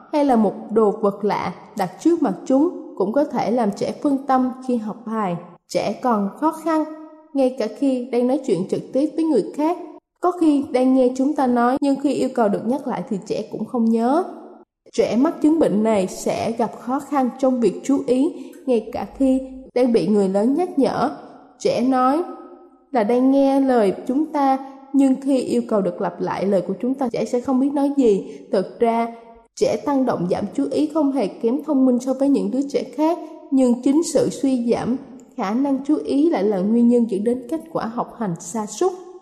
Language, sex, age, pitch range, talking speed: Vietnamese, female, 20-39, 225-290 Hz, 215 wpm